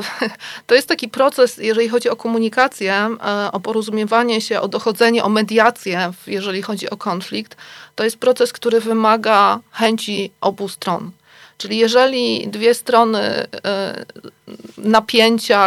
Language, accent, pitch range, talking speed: Polish, native, 205-235 Hz, 125 wpm